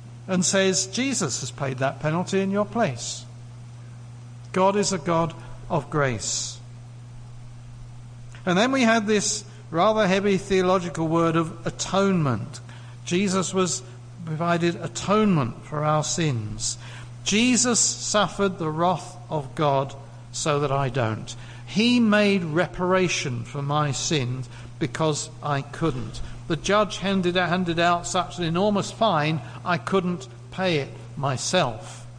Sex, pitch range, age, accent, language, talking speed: male, 120-165 Hz, 60-79, British, English, 125 wpm